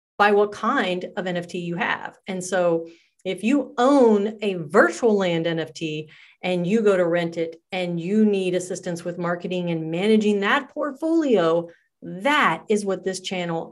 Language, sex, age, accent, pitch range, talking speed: English, female, 40-59, American, 180-235 Hz, 160 wpm